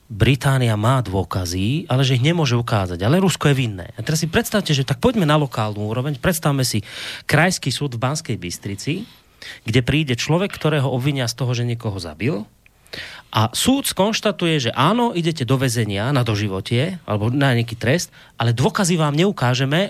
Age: 30-49